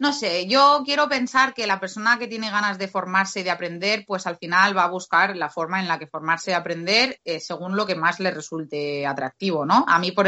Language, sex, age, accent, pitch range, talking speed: Spanish, female, 20-39, Spanish, 170-220 Hz, 245 wpm